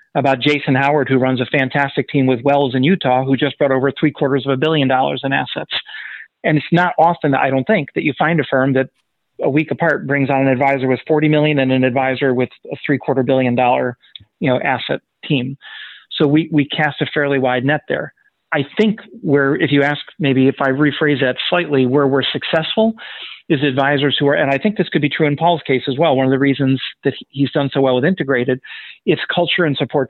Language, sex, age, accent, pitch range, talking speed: English, male, 40-59, American, 135-155 Hz, 225 wpm